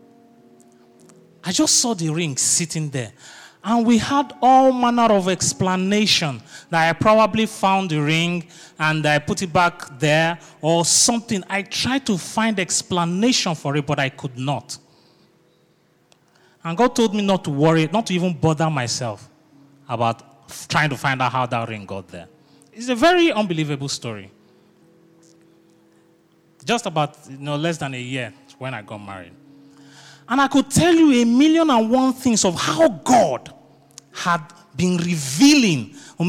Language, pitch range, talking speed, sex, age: English, 150-235 Hz, 155 wpm, male, 30-49